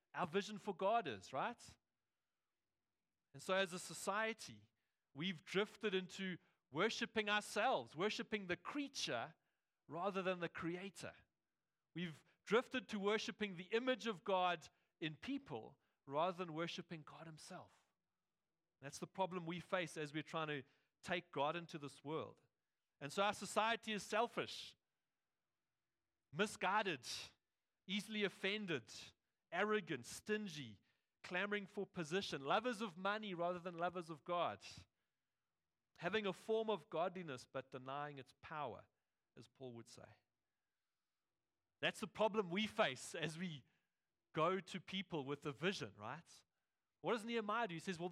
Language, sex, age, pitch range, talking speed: English, male, 40-59, 155-210 Hz, 135 wpm